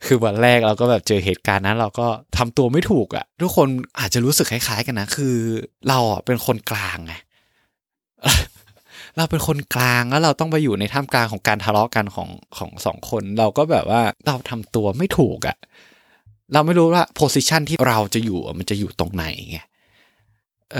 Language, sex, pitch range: Thai, male, 100-130 Hz